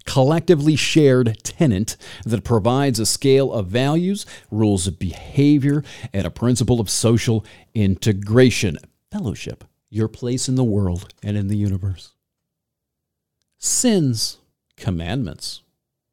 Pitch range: 105-140 Hz